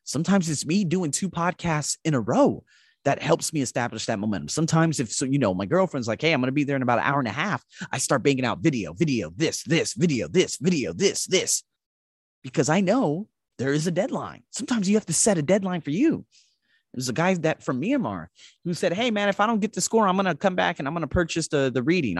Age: 30-49